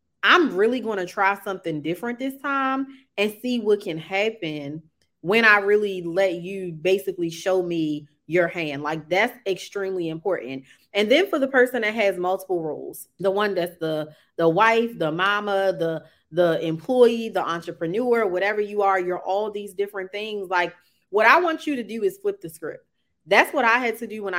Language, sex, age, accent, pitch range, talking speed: English, female, 30-49, American, 175-225 Hz, 185 wpm